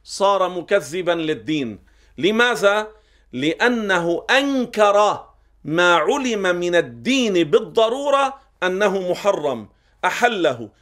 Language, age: Arabic, 40-59